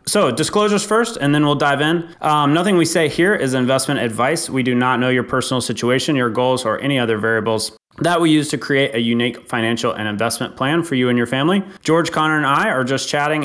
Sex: male